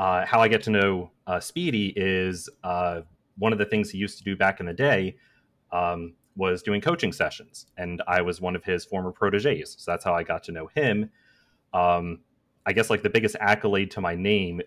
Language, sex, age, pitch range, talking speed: English, male, 30-49, 90-105 Hz, 215 wpm